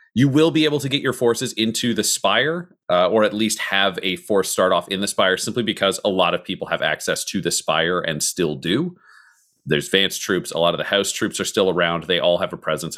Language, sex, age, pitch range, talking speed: English, male, 30-49, 100-140 Hz, 250 wpm